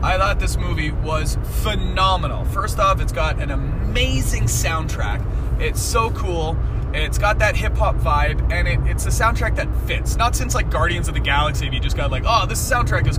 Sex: male